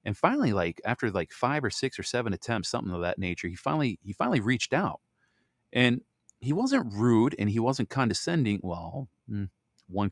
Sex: male